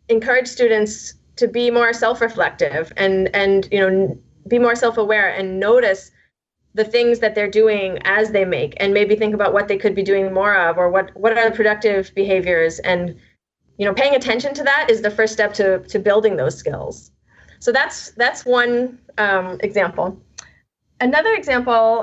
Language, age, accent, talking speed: English, 20-39, American, 175 wpm